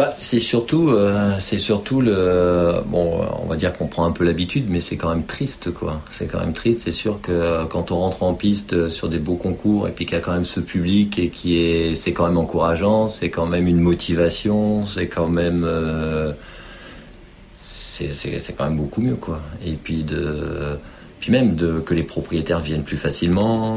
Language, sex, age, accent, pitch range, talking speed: French, male, 50-69, French, 80-95 Hz, 200 wpm